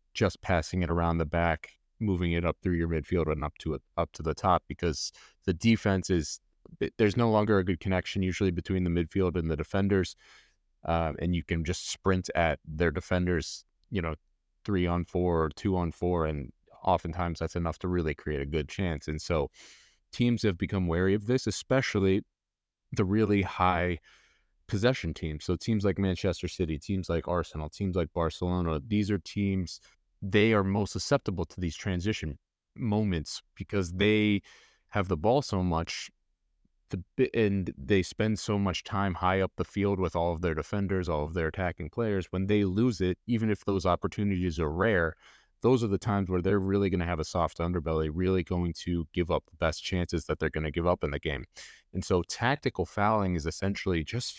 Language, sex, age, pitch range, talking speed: English, male, 20-39, 85-100 Hz, 195 wpm